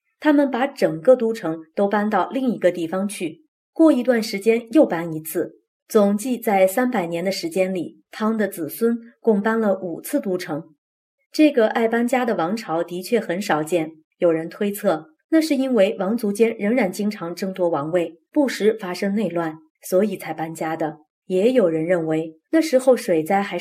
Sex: female